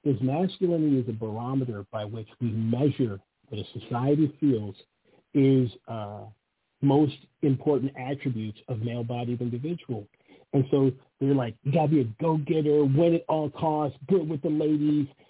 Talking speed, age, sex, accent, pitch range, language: 155 wpm, 50-69, male, American, 115-140 Hz, English